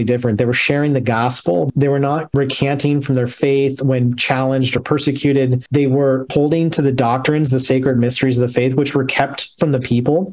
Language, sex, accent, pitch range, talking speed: English, male, American, 130-155 Hz, 205 wpm